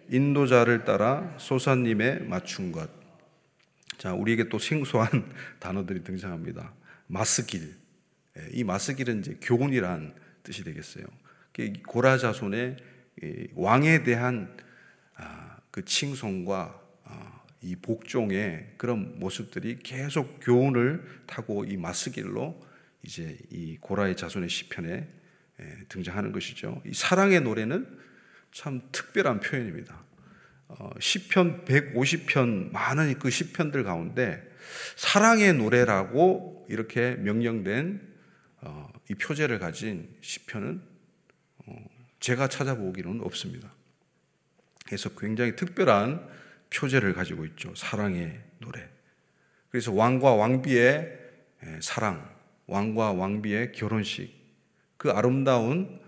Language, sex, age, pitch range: Korean, male, 40-59, 110-150 Hz